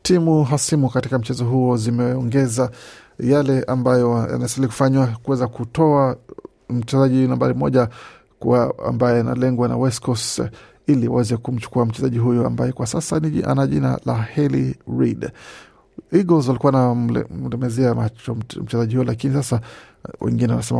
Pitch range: 115-135 Hz